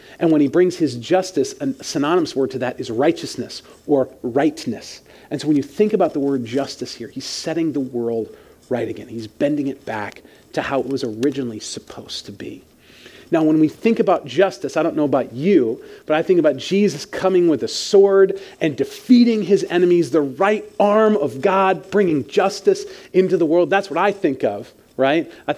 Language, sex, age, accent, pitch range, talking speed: English, male, 40-59, American, 145-215 Hz, 195 wpm